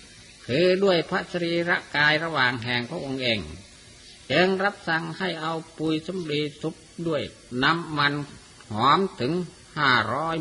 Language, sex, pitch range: Thai, male, 125-165 Hz